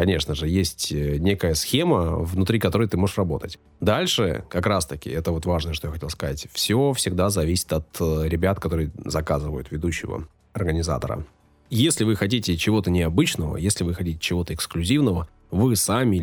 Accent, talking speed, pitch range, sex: native, 155 wpm, 85-100 Hz, male